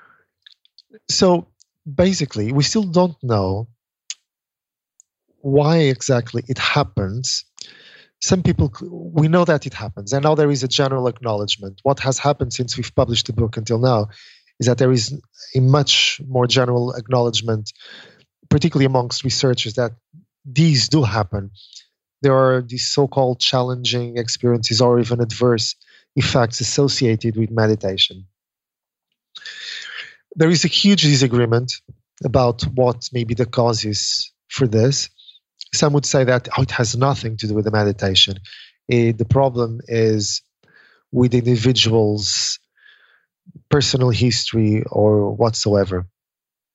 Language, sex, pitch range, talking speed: English, male, 115-140 Hz, 125 wpm